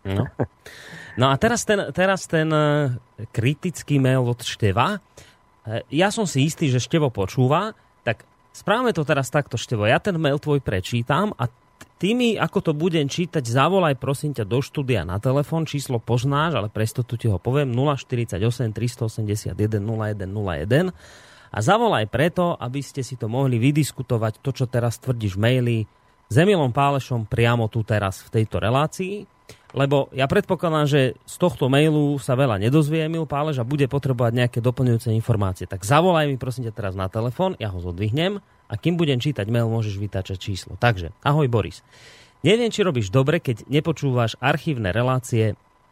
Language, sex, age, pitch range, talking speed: Slovak, male, 30-49, 115-150 Hz, 160 wpm